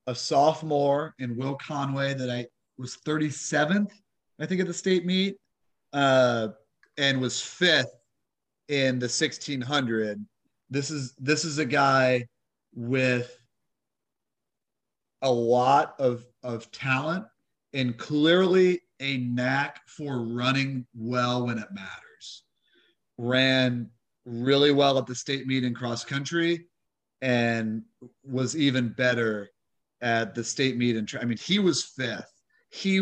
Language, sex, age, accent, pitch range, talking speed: English, male, 30-49, American, 120-150 Hz, 125 wpm